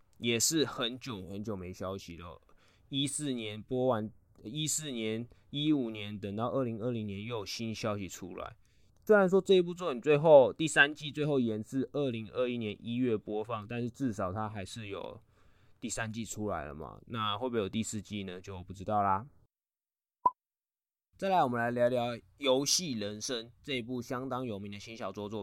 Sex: male